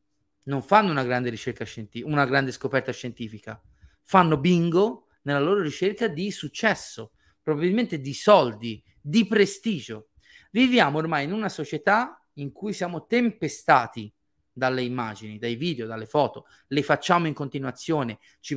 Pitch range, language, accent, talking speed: 130-180 Hz, Italian, native, 135 wpm